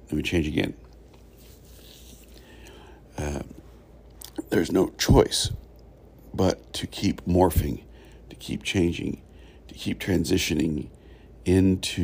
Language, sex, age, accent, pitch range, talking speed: English, male, 60-79, American, 75-90 Hz, 95 wpm